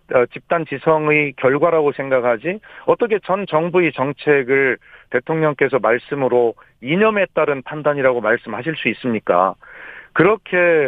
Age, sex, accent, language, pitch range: 40-59, male, native, Korean, 125-170 Hz